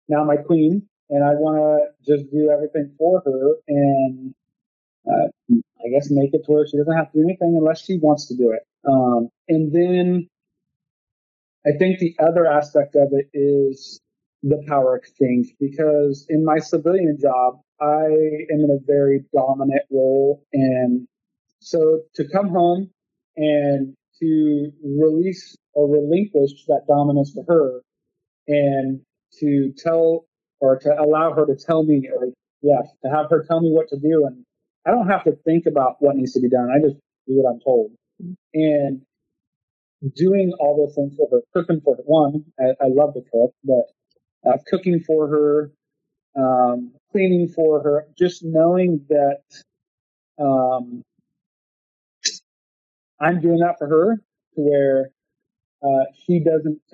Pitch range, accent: 140-165 Hz, American